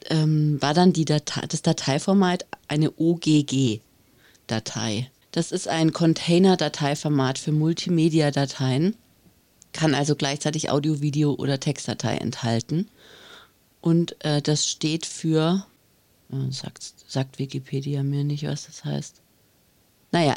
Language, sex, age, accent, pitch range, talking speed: German, female, 40-59, German, 140-165 Hz, 100 wpm